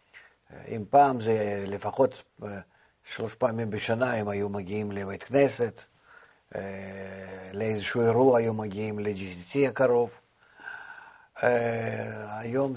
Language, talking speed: Hebrew, 90 wpm